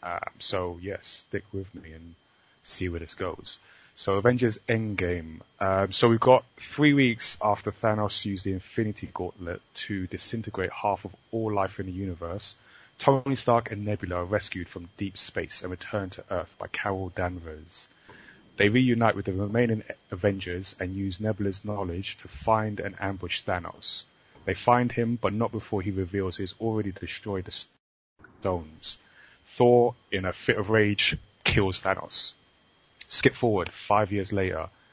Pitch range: 95-110 Hz